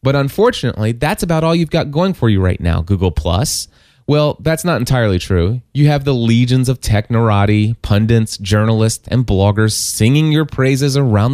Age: 20-39